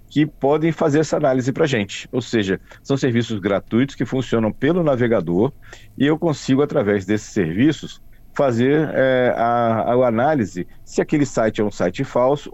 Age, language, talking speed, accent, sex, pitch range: 50-69, Portuguese, 165 wpm, Brazilian, male, 105-140 Hz